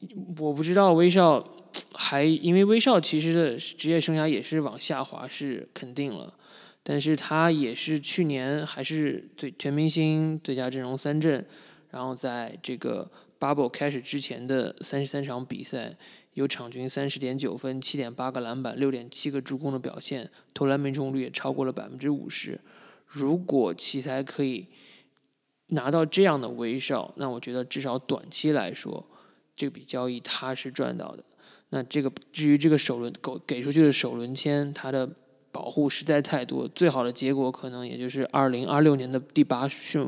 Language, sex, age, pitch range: Chinese, male, 20-39, 130-150 Hz